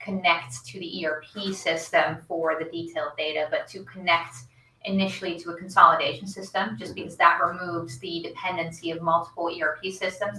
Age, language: 30-49, English